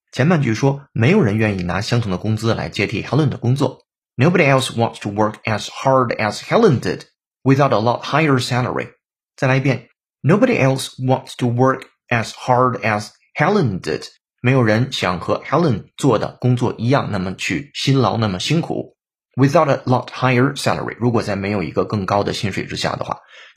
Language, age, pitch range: Chinese, 30-49, 110-140 Hz